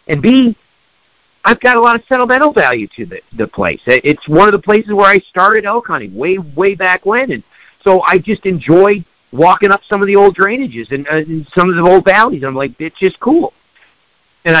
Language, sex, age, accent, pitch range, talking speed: English, male, 50-69, American, 160-205 Hz, 220 wpm